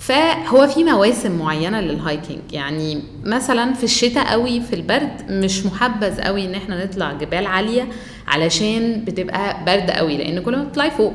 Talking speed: 160 wpm